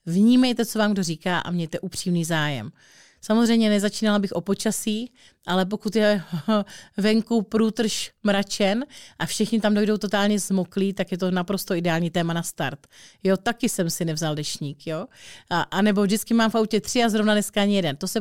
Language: Czech